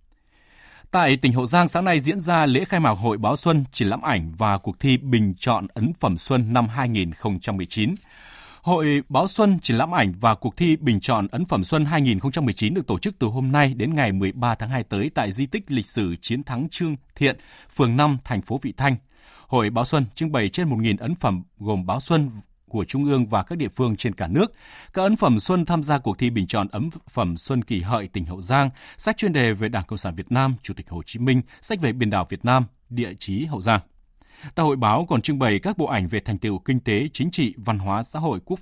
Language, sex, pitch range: Vietnamese, male, 105-140 Hz